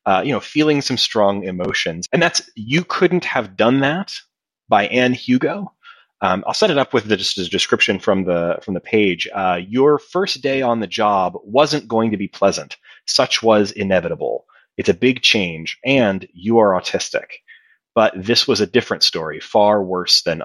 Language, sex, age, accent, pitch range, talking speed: English, male, 30-49, American, 95-130 Hz, 190 wpm